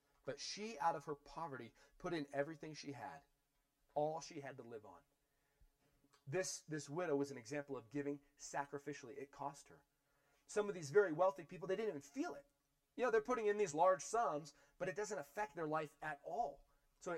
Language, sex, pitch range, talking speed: English, male, 140-160 Hz, 200 wpm